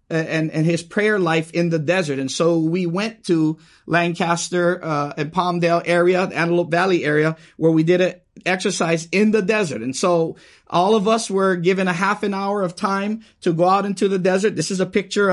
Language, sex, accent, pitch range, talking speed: English, male, American, 165-200 Hz, 210 wpm